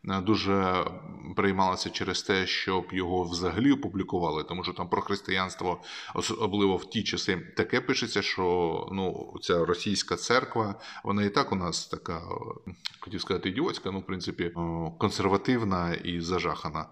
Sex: male